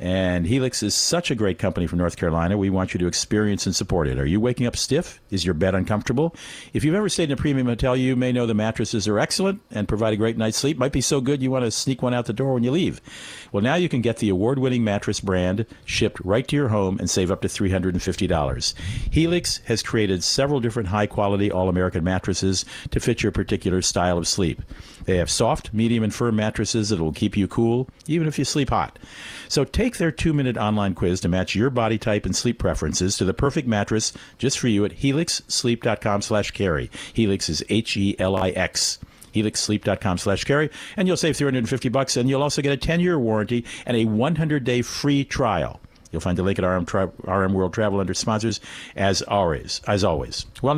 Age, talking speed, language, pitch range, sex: 50-69, 210 wpm, English, 95-130 Hz, male